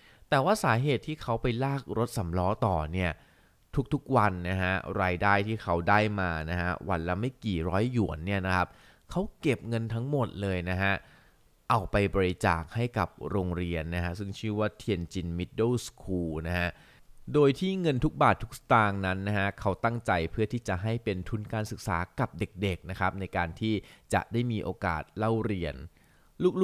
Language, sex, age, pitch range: Thai, male, 20-39, 90-120 Hz